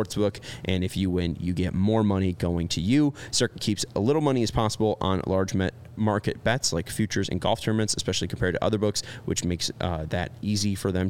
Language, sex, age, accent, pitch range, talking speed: English, male, 20-39, American, 95-120 Hz, 220 wpm